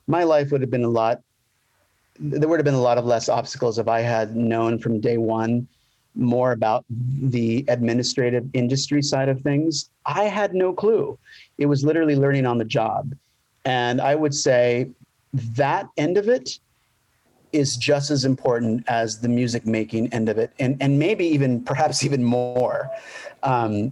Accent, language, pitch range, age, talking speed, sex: American, English, 115-140 Hz, 40-59, 175 wpm, male